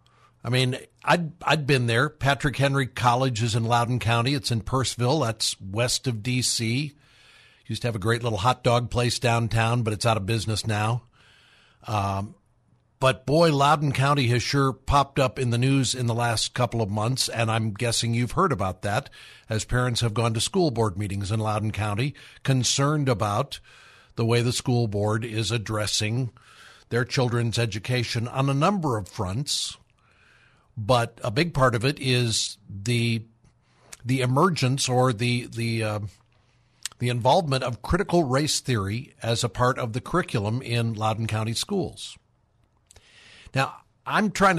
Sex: male